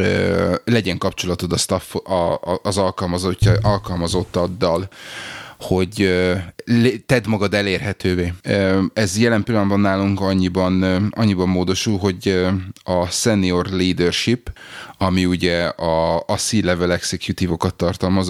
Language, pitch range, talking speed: Hungarian, 90-100 Hz, 95 wpm